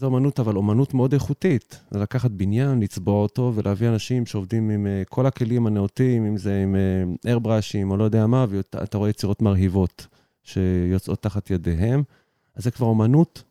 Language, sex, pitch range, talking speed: Hebrew, male, 100-120 Hz, 165 wpm